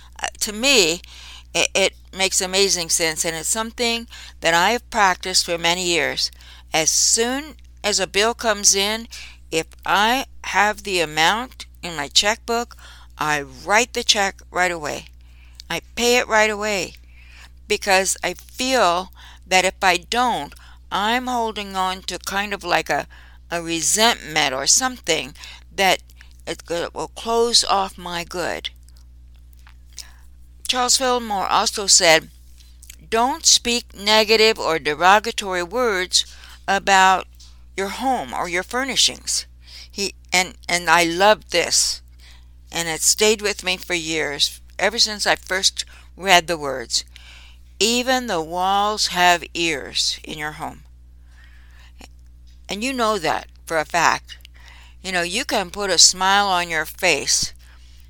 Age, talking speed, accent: 60-79, 135 wpm, American